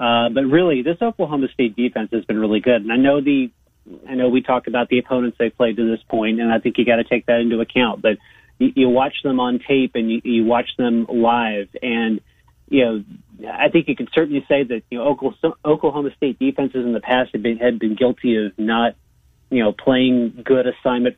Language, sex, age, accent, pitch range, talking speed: English, male, 30-49, American, 115-130 Hz, 225 wpm